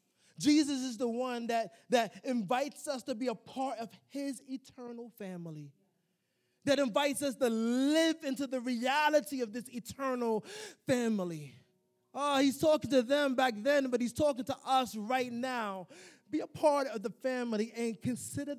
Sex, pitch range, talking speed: male, 215-320 Hz, 160 wpm